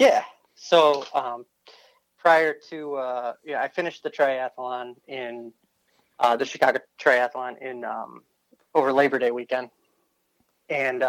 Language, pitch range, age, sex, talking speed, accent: English, 125-145 Hz, 30-49, male, 125 wpm, American